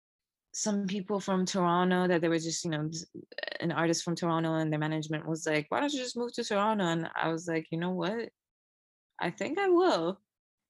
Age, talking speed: 20-39, 210 wpm